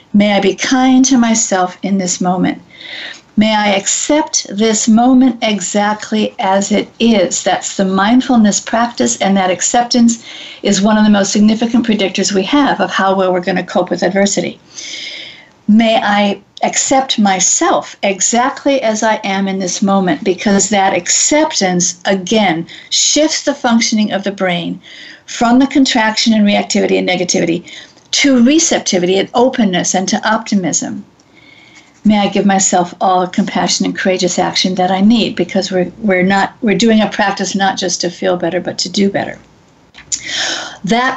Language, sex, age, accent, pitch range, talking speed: English, female, 50-69, American, 195-245 Hz, 160 wpm